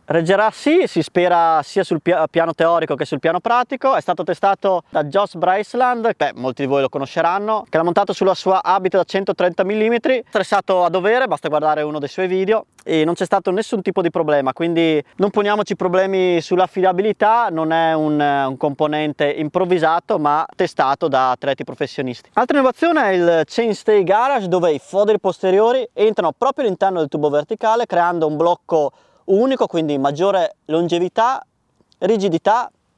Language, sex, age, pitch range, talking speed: Italian, male, 20-39, 165-215 Hz, 165 wpm